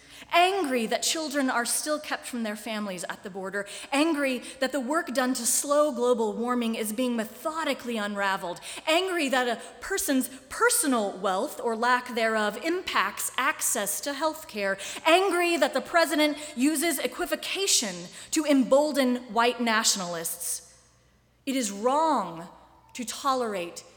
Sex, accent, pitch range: female, American, 215-280 Hz